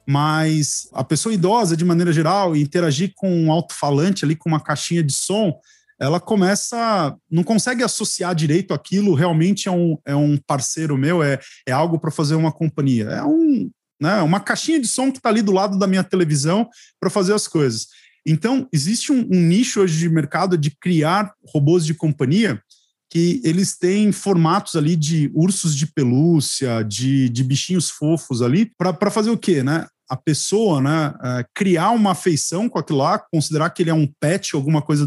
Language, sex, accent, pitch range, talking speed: Portuguese, male, Brazilian, 145-185 Hz, 180 wpm